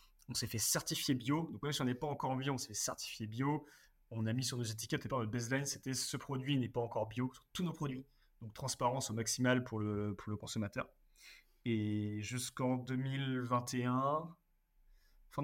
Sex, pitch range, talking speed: male, 105-130 Hz, 210 wpm